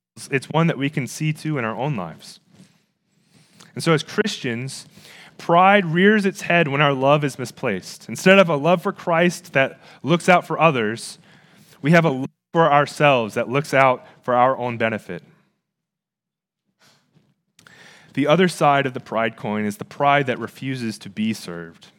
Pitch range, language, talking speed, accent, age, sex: 140-185 Hz, English, 170 wpm, American, 30-49, male